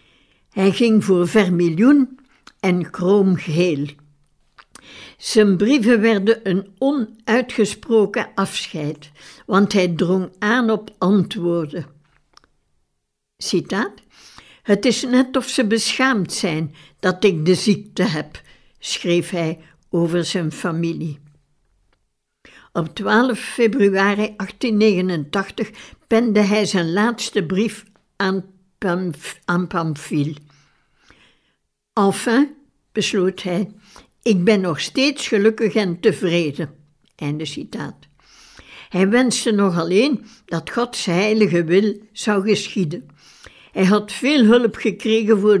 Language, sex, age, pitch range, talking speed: Dutch, female, 60-79, 175-220 Hz, 100 wpm